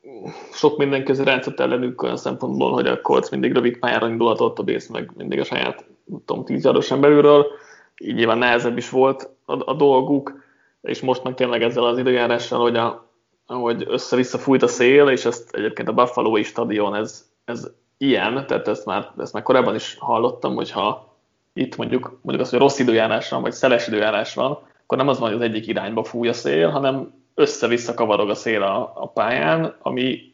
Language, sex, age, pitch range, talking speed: Hungarian, male, 20-39, 115-135 Hz, 180 wpm